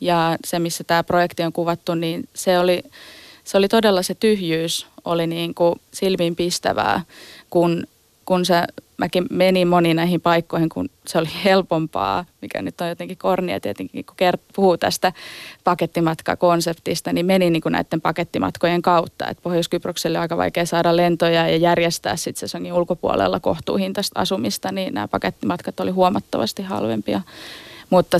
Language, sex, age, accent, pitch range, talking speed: Finnish, female, 20-39, native, 165-185 Hz, 145 wpm